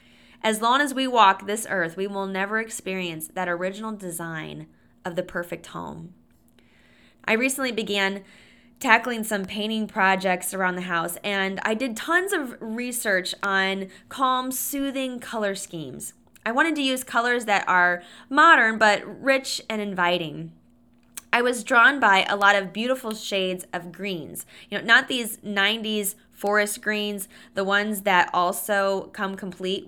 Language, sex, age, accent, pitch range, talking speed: English, female, 20-39, American, 180-220 Hz, 150 wpm